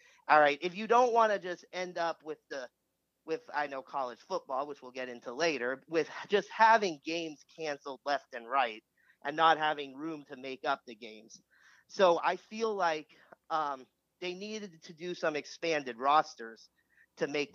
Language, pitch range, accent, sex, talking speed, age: English, 145-195 Hz, American, male, 180 wpm, 40-59